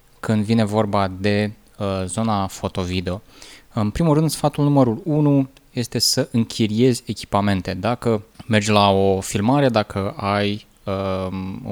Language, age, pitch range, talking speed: Romanian, 20-39, 100-120 Hz, 130 wpm